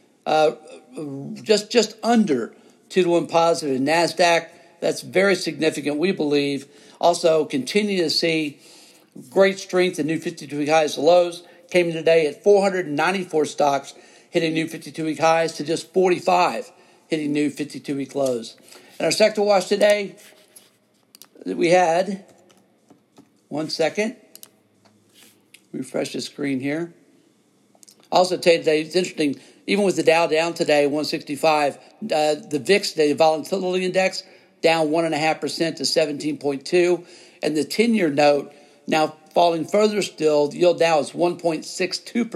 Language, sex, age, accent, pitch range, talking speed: English, male, 60-79, American, 150-185 Hz, 130 wpm